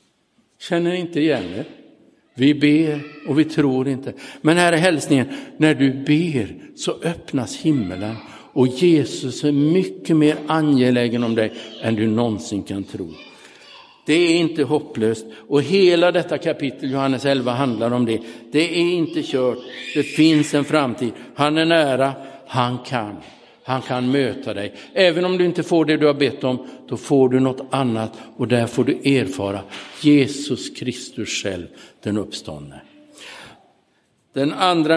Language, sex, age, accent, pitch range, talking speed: Swedish, male, 60-79, Norwegian, 120-155 Hz, 155 wpm